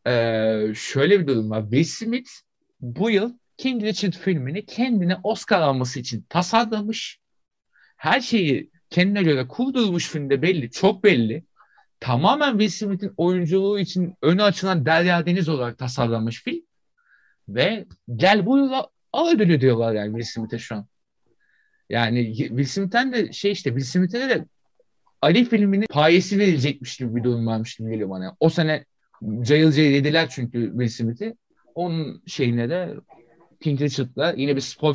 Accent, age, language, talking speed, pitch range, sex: native, 50-69, Turkish, 140 wpm, 120-185 Hz, male